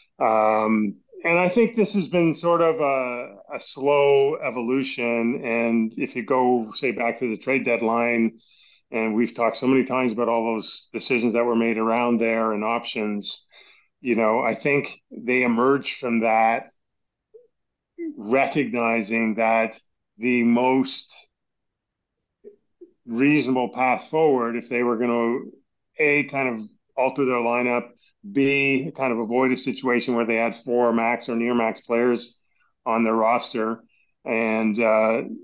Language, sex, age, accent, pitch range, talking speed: English, male, 40-59, American, 115-130 Hz, 145 wpm